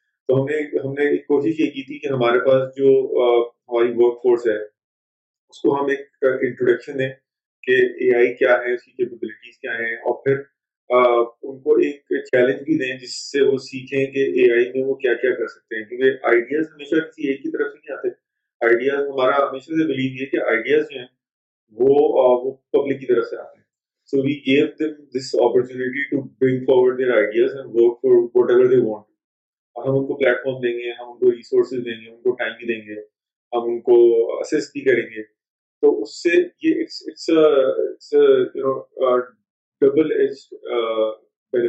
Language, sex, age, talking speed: Urdu, male, 30-49, 145 wpm